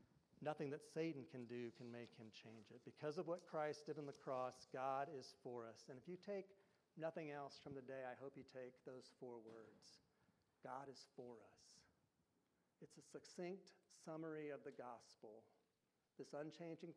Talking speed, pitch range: 180 wpm, 125-155 Hz